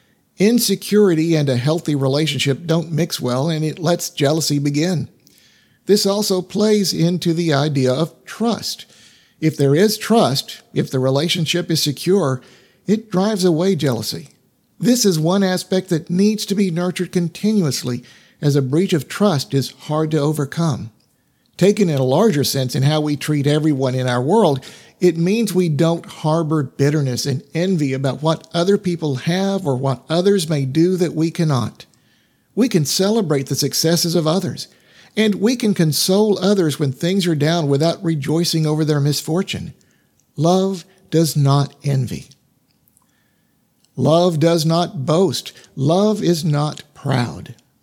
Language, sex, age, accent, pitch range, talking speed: English, male, 50-69, American, 140-185 Hz, 150 wpm